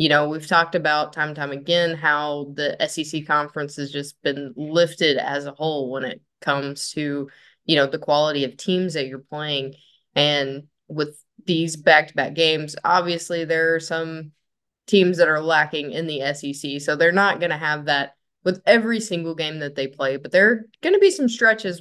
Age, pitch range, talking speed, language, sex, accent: 10-29, 145-175 Hz, 195 wpm, English, female, American